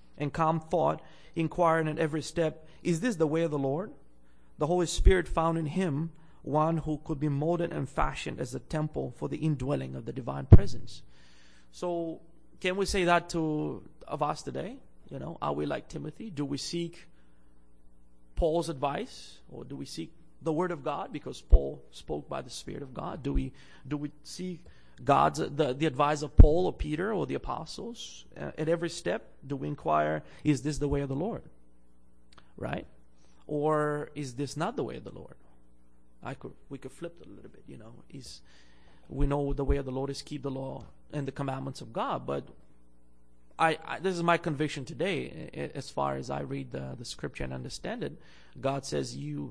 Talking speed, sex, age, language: 200 wpm, male, 30-49, English